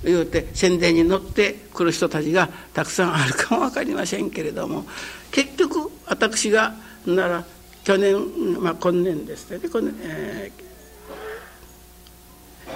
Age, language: 60-79, Japanese